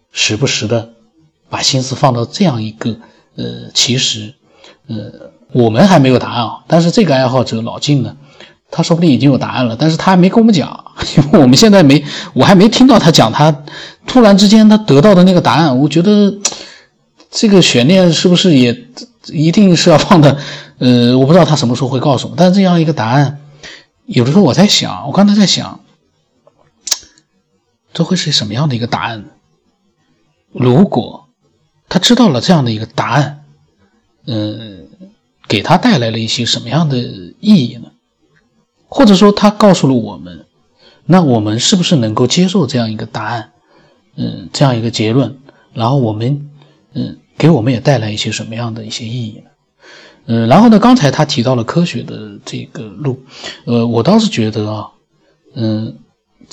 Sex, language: male, Chinese